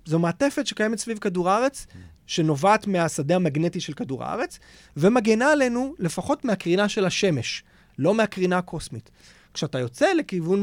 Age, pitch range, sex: 30-49, 150-215 Hz, male